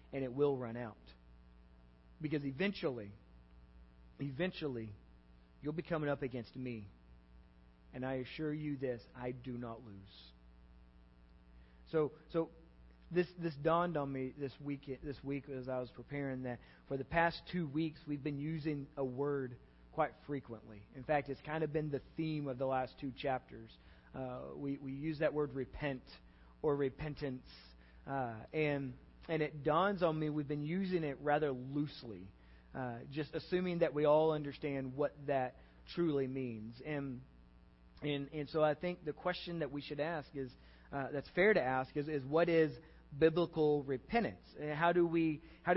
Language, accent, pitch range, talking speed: English, American, 115-155 Hz, 165 wpm